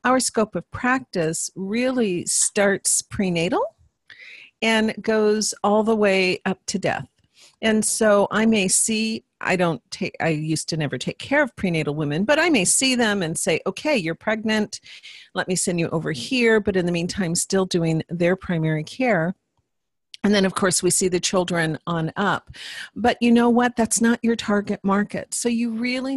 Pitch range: 185-235 Hz